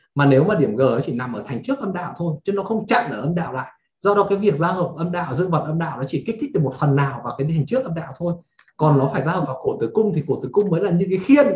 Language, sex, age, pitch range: Vietnamese, male, 20-39, 140-200 Hz